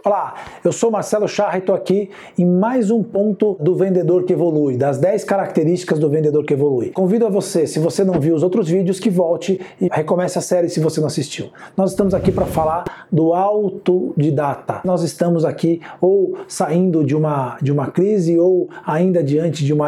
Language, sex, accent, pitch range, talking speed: Portuguese, male, Brazilian, 170-205 Hz, 195 wpm